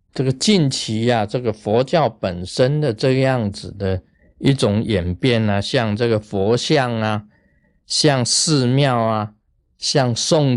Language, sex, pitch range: Chinese, male, 105-145 Hz